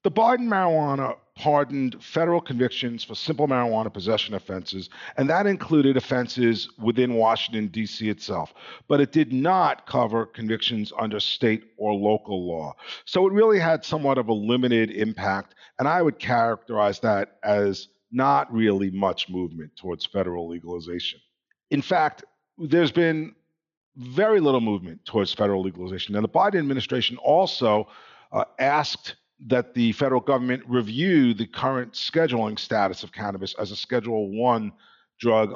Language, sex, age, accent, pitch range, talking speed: English, male, 50-69, American, 105-140 Hz, 145 wpm